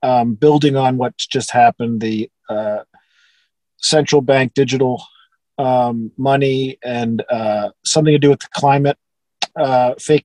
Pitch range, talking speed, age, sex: 135-175 Hz, 135 wpm, 40-59, male